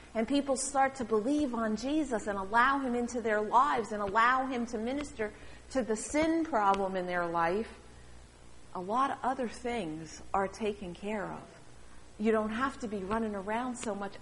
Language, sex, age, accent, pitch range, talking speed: English, female, 50-69, American, 180-235 Hz, 180 wpm